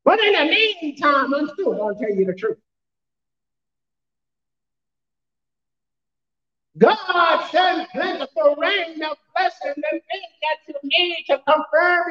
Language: English